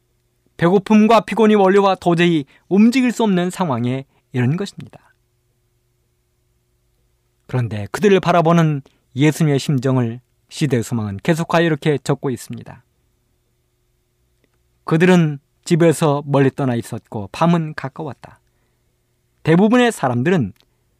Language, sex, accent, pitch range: Korean, male, native, 115-170 Hz